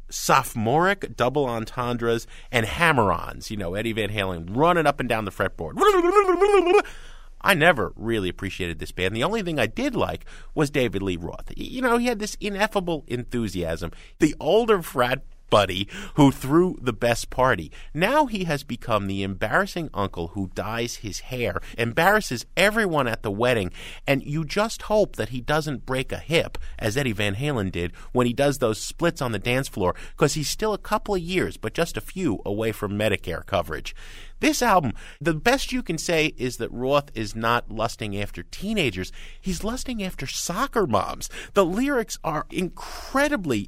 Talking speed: 175 wpm